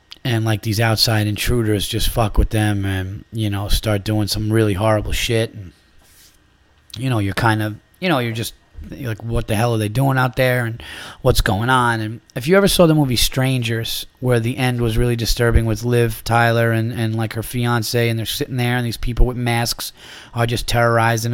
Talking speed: 215 wpm